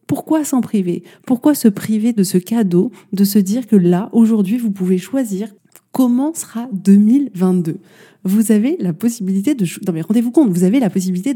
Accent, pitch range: French, 185-230 Hz